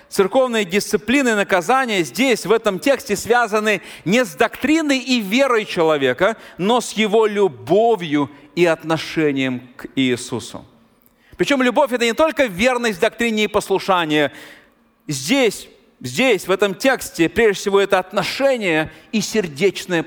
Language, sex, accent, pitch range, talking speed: Russian, male, native, 180-245 Hz, 130 wpm